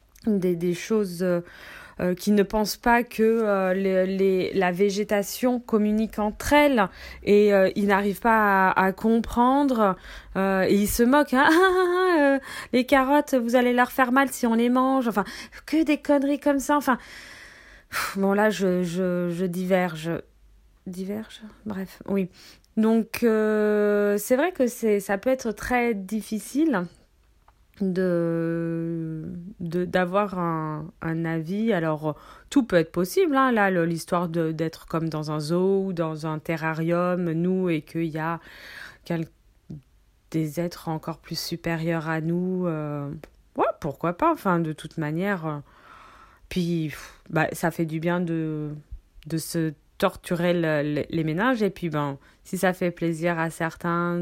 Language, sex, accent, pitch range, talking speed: French, female, French, 165-220 Hz, 155 wpm